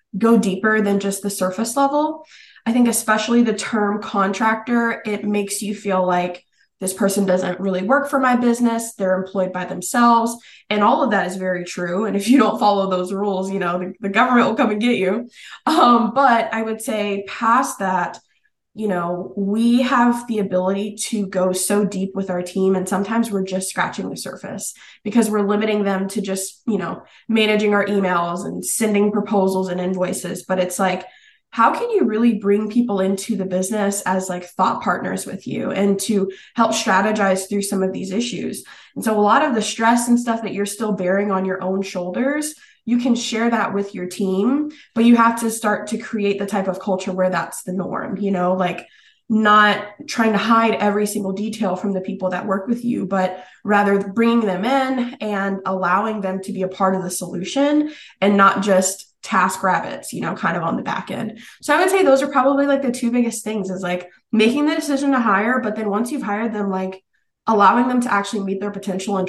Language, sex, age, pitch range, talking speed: English, female, 20-39, 190-230 Hz, 210 wpm